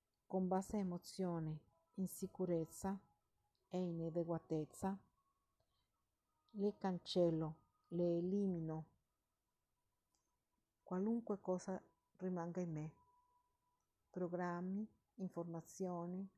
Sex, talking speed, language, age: female, 65 wpm, Italian, 50-69